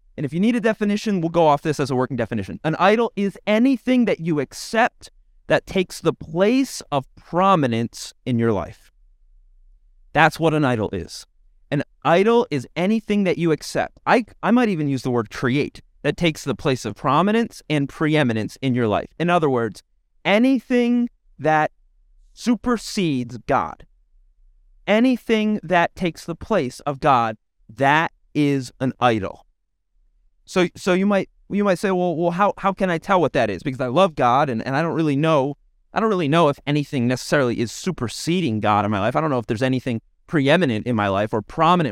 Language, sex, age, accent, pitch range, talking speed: English, male, 30-49, American, 115-180 Hz, 190 wpm